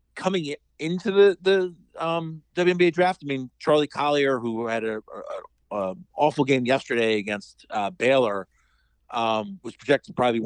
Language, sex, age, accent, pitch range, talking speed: English, male, 50-69, American, 120-165 Hz, 150 wpm